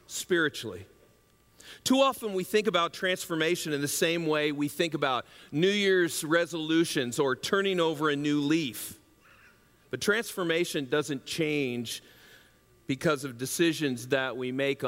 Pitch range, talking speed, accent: 140-195 Hz, 135 wpm, American